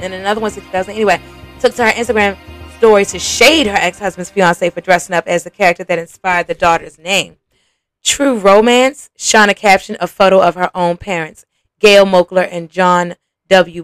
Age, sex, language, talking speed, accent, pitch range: 20-39, female, English, 180 wpm, American, 175-205 Hz